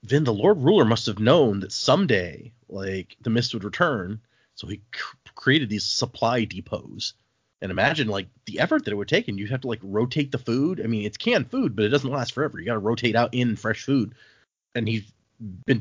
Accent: American